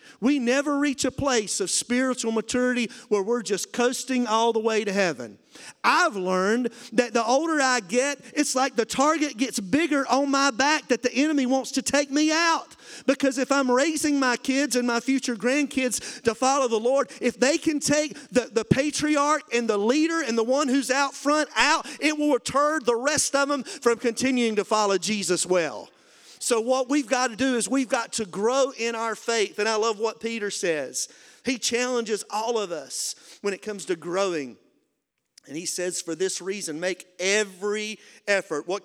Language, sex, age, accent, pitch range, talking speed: English, male, 40-59, American, 195-265 Hz, 195 wpm